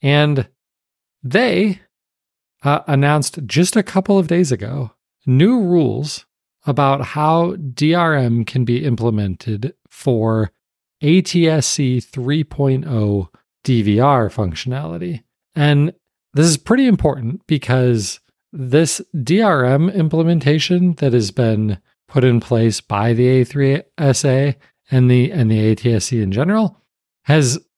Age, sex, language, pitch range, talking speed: 40-59, male, English, 120-160 Hz, 105 wpm